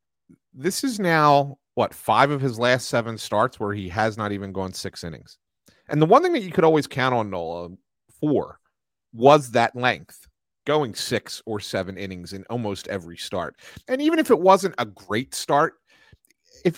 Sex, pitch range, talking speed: male, 100-145 Hz, 180 wpm